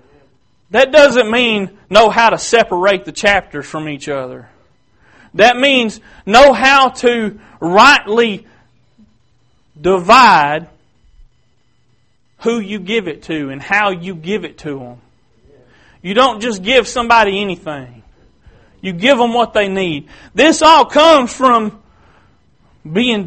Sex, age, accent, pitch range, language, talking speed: male, 40-59, American, 175-255 Hz, English, 125 wpm